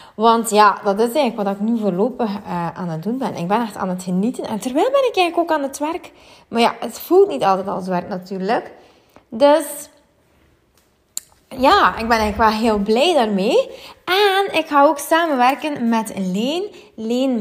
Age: 20-39